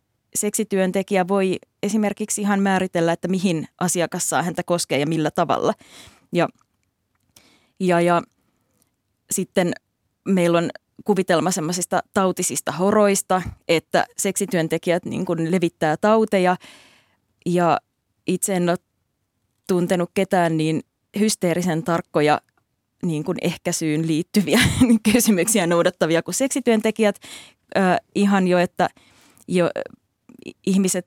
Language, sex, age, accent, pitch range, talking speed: Finnish, female, 20-39, native, 170-200 Hz, 100 wpm